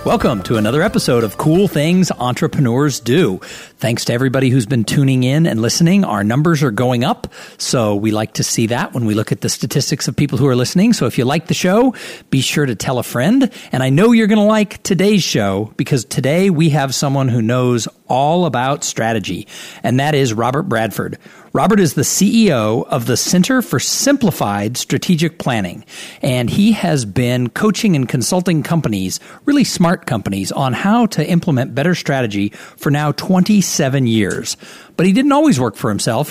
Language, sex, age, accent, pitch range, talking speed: English, male, 50-69, American, 120-170 Hz, 190 wpm